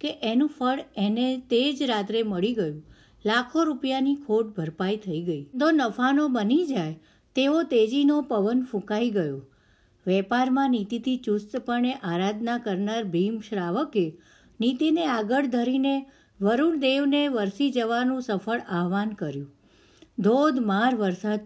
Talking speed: 65 wpm